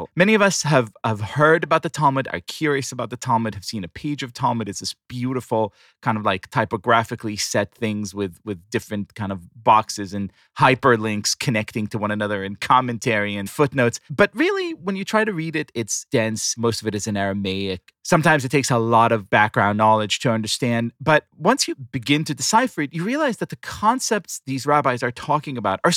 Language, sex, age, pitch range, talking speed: English, male, 30-49, 110-160 Hz, 205 wpm